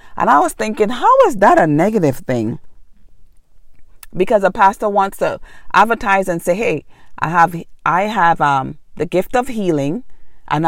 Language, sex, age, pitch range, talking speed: English, female, 40-59, 140-180 Hz, 165 wpm